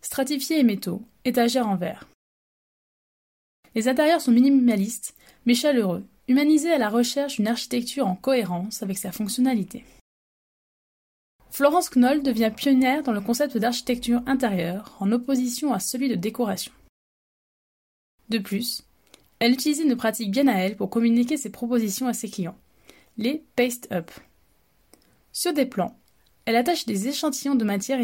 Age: 20-39